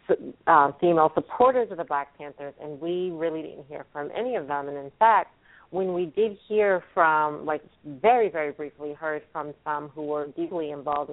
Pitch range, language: 150-170 Hz, English